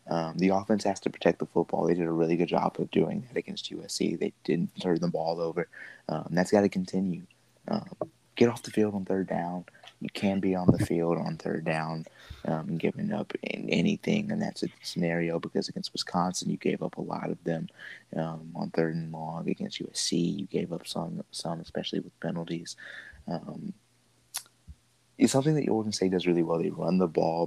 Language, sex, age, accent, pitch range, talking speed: English, male, 20-39, American, 80-90 Hz, 210 wpm